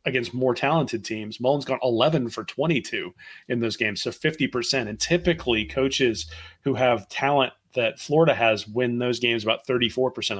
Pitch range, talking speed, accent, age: 115-145 Hz, 160 wpm, American, 30-49